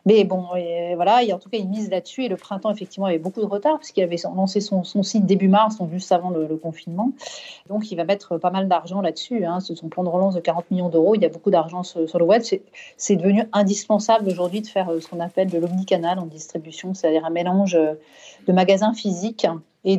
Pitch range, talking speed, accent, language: 175-215 Hz, 250 wpm, French, French